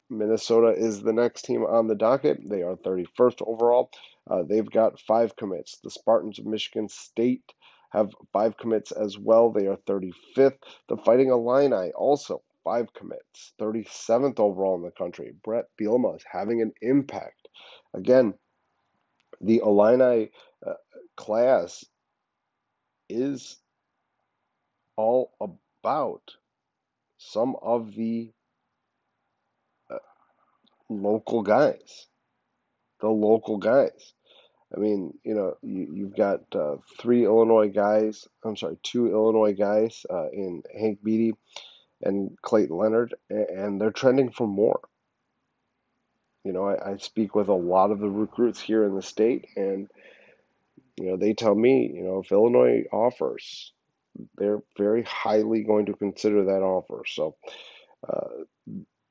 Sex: male